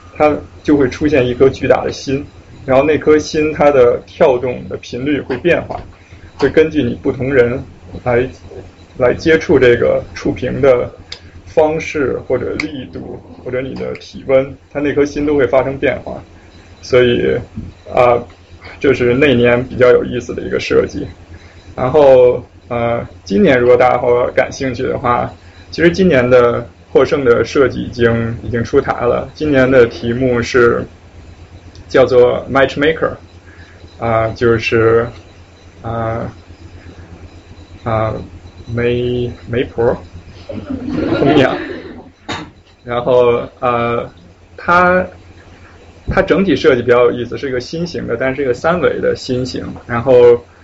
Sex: male